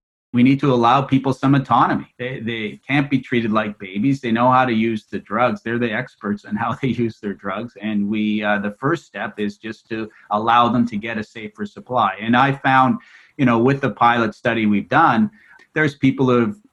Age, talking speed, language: 30-49, 215 wpm, English